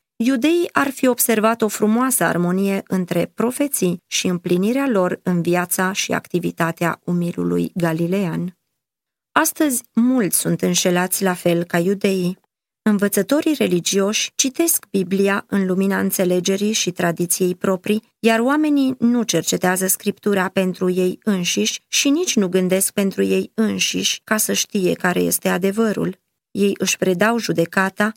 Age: 20-39